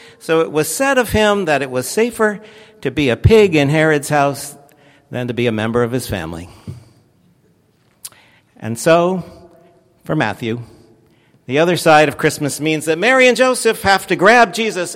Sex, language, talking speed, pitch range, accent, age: male, English, 175 wpm, 125-180 Hz, American, 60-79